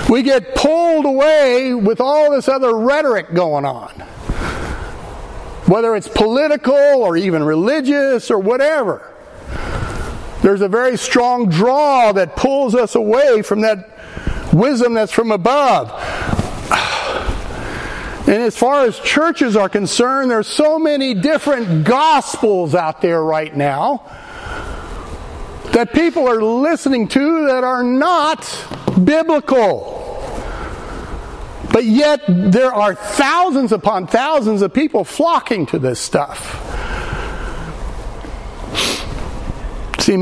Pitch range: 215-290 Hz